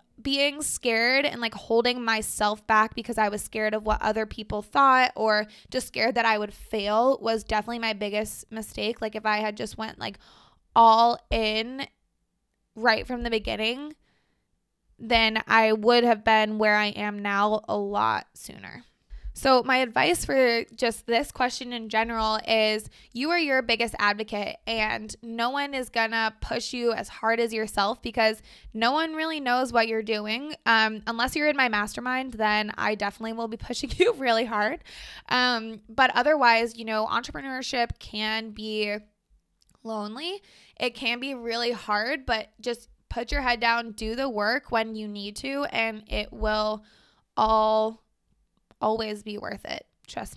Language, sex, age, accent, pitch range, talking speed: English, female, 20-39, American, 215-255 Hz, 165 wpm